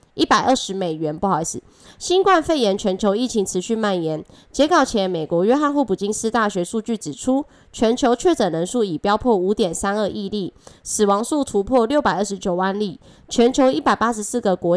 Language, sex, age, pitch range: Chinese, female, 20-39, 190-260 Hz